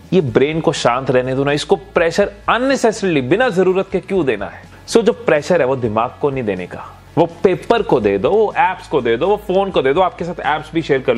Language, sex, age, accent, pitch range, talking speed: Hindi, male, 30-49, native, 130-185 Hz, 260 wpm